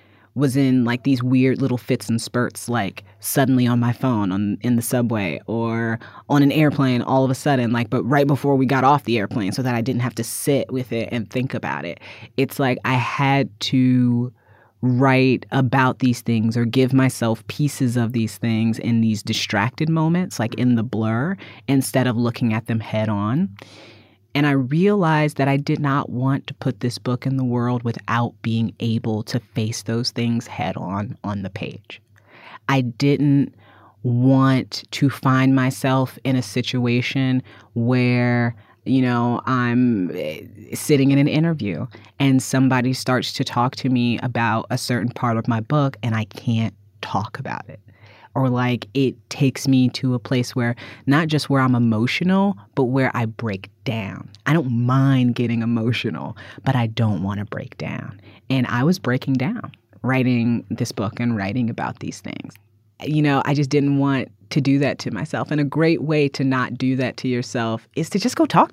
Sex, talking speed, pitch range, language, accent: female, 185 wpm, 115-135 Hz, English, American